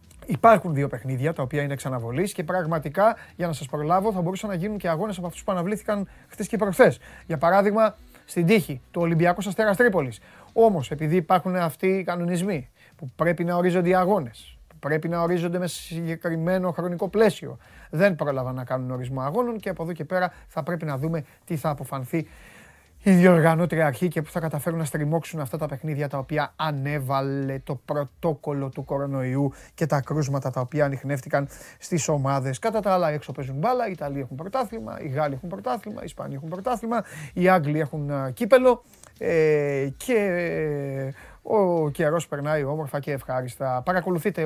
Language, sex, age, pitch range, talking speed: Greek, male, 30-49, 140-185 Hz, 175 wpm